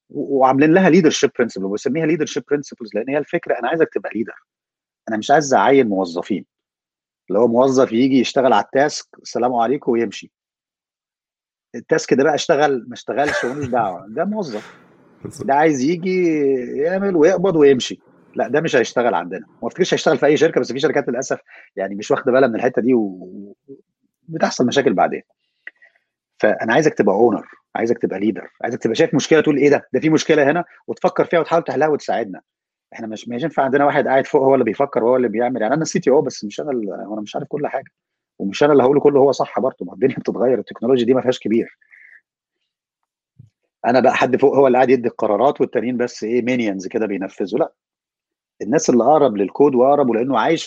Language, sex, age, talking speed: Arabic, male, 30-49, 190 wpm